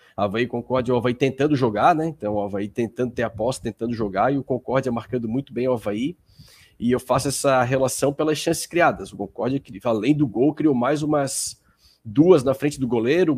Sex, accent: male, Brazilian